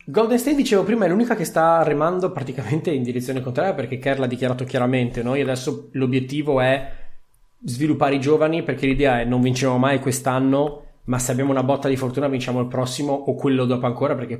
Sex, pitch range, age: male, 125-150 Hz, 20-39